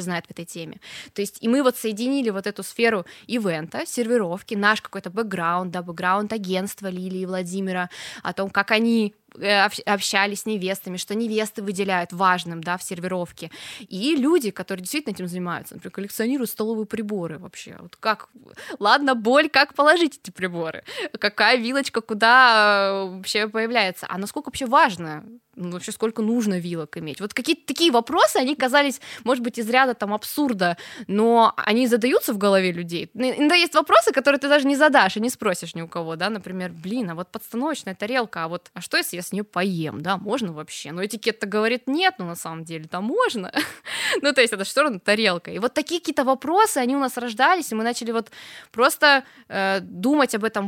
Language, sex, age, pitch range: Russian, female, 20-39, 185-250 Hz